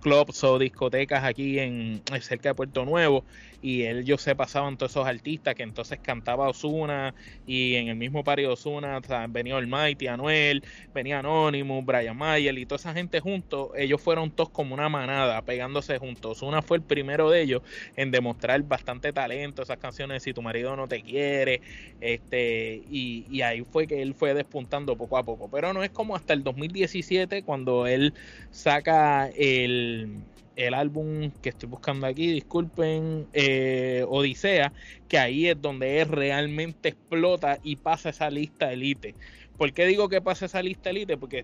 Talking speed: 175 wpm